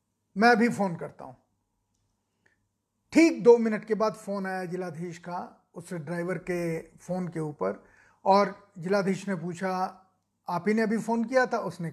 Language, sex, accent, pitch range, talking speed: Hindi, male, native, 170-210 Hz, 160 wpm